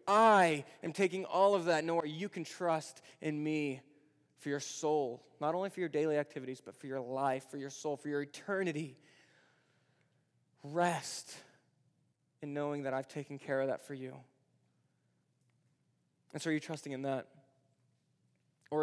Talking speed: 160 wpm